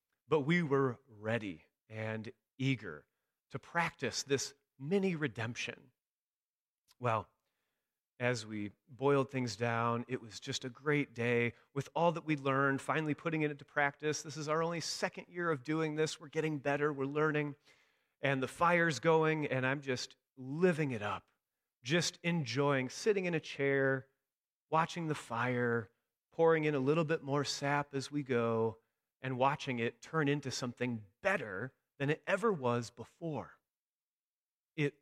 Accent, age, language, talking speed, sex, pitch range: American, 30-49, English, 150 wpm, male, 120-160 Hz